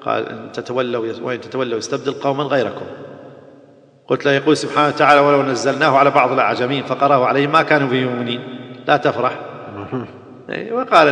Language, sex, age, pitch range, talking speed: Arabic, male, 40-59, 120-145 Hz, 140 wpm